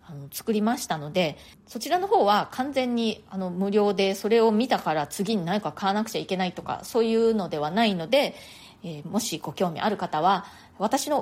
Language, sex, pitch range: Japanese, female, 180-250 Hz